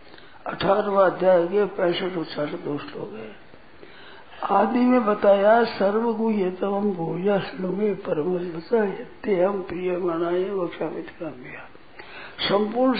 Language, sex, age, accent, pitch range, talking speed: Hindi, male, 60-79, native, 180-230 Hz, 100 wpm